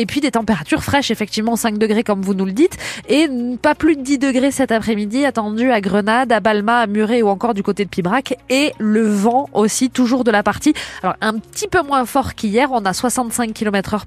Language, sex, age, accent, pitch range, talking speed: French, female, 20-39, French, 185-235 Hz, 230 wpm